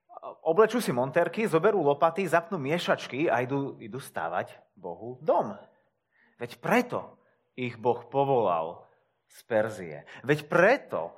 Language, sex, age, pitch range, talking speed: Slovak, male, 30-49, 120-170 Hz, 120 wpm